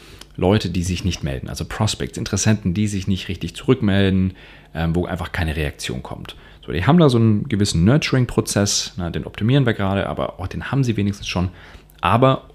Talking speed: 185 wpm